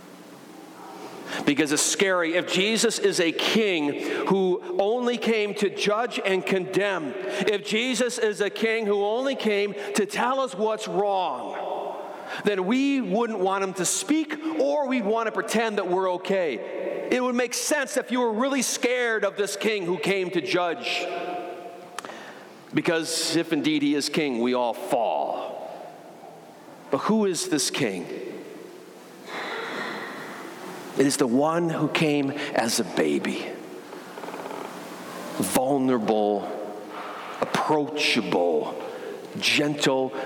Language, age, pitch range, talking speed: English, 40-59, 175-235 Hz, 125 wpm